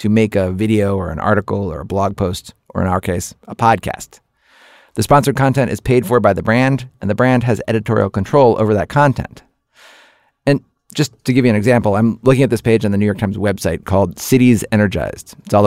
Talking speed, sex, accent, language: 220 wpm, male, American, English